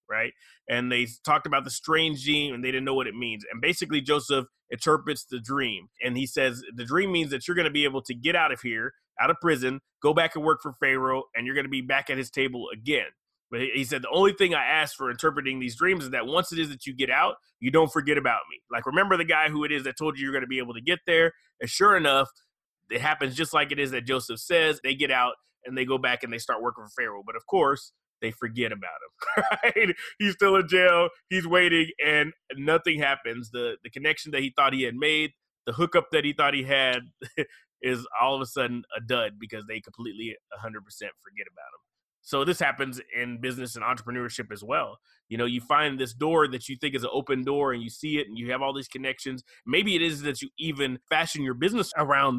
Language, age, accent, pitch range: English, 30-49, American, 125-150 Hz